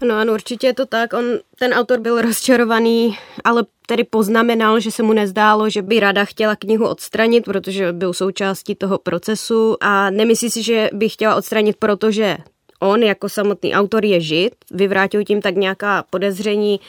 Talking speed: 170 wpm